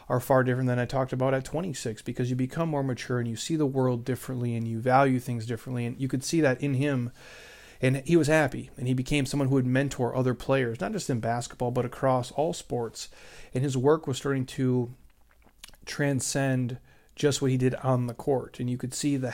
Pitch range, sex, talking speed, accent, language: 120-135 Hz, male, 225 wpm, American, English